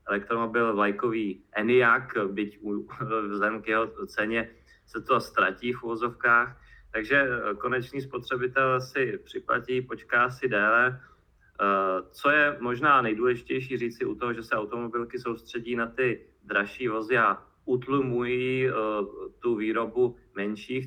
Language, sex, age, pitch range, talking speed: Czech, male, 30-49, 115-130 Hz, 120 wpm